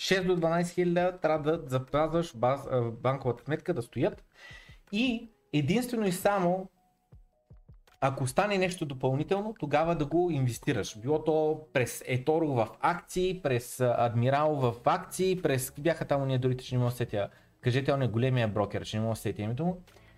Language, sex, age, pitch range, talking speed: Bulgarian, male, 30-49, 115-160 Hz, 165 wpm